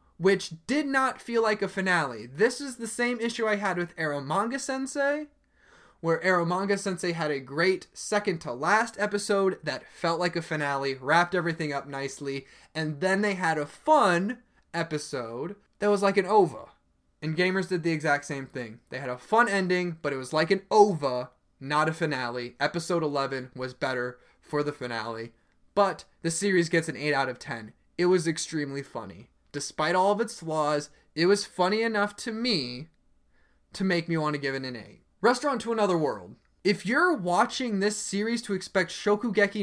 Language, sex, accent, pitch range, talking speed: English, male, American, 150-210 Hz, 185 wpm